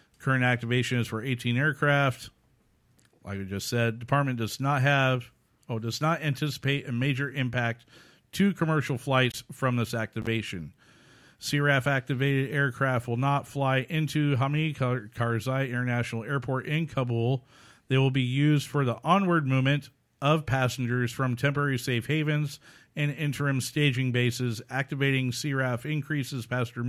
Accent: American